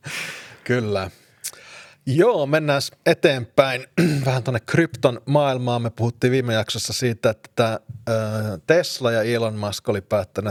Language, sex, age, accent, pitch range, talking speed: Finnish, male, 30-49, native, 100-130 Hz, 115 wpm